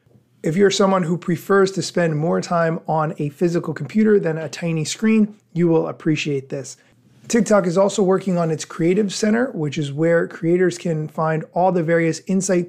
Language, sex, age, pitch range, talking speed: English, male, 30-49, 155-195 Hz, 185 wpm